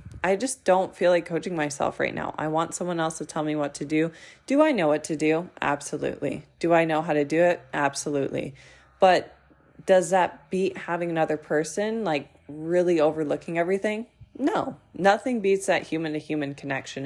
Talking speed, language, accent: 185 wpm, English, American